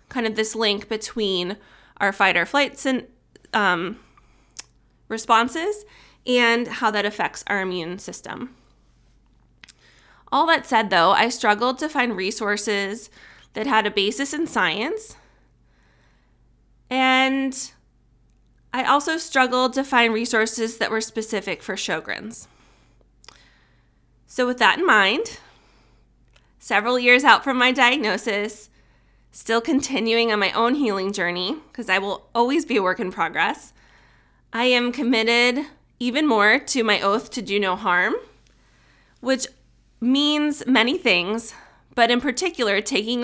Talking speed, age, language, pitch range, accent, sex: 125 wpm, 30-49, English, 200-255 Hz, American, female